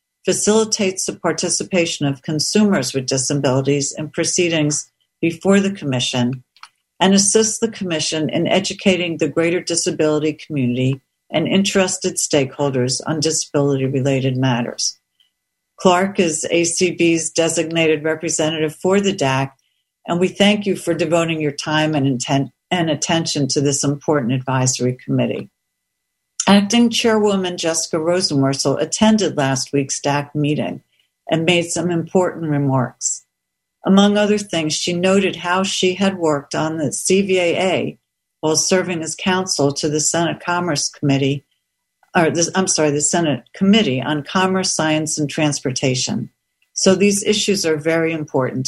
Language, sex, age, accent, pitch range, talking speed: English, female, 60-79, American, 140-180 Hz, 130 wpm